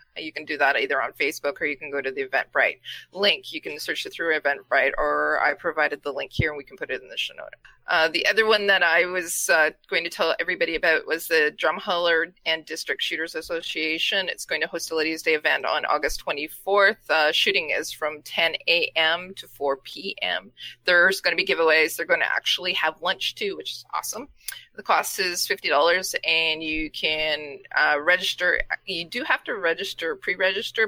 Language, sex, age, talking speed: English, female, 20-39, 205 wpm